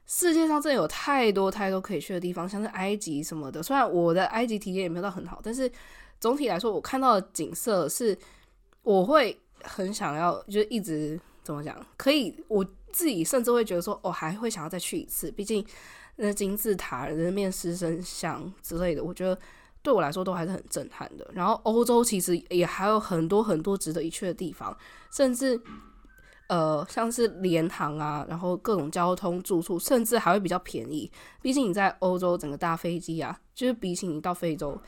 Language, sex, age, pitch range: Chinese, female, 10-29, 170-225 Hz